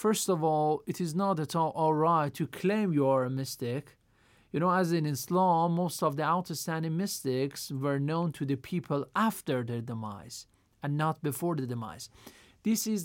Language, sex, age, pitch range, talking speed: Persian, male, 40-59, 140-180 Hz, 190 wpm